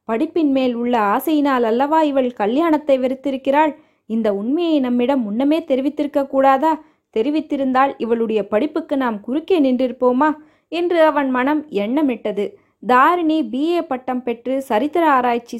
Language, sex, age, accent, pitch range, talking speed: Tamil, female, 20-39, native, 235-295 Hz, 115 wpm